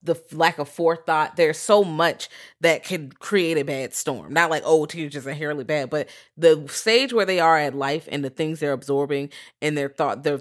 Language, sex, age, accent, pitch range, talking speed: English, female, 30-49, American, 155-205 Hz, 215 wpm